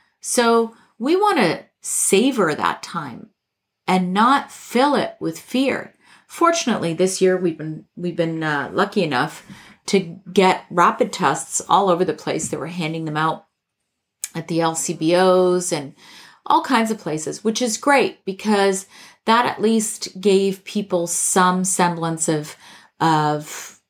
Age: 40-59